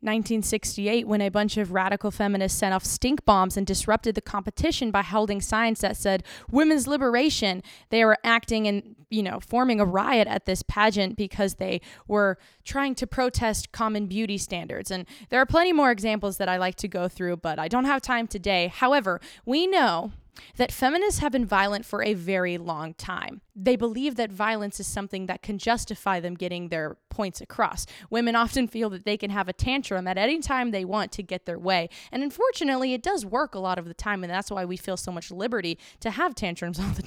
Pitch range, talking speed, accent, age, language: 195-255 Hz, 210 wpm, American, 20-39, English